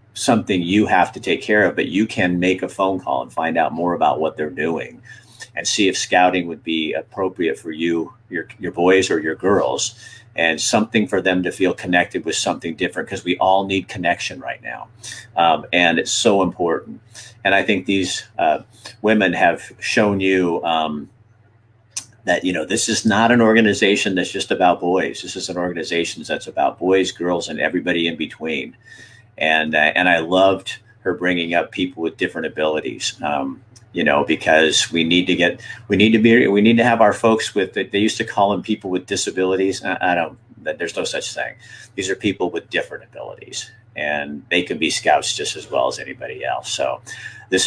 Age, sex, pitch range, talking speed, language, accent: 50-69, male, 90-110 Hz, 195 wpm, English, American